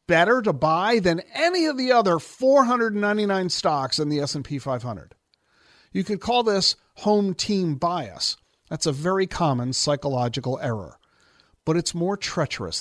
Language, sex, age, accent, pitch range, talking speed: English, male, 50-69, American, 130-210 Hz, 145 wpm